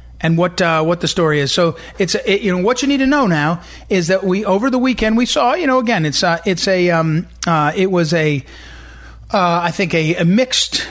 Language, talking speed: English, 250 wpm